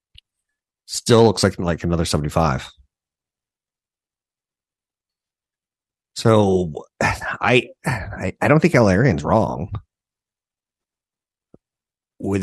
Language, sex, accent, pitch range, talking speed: English, male, American, 80-100 Hz, 80 wpm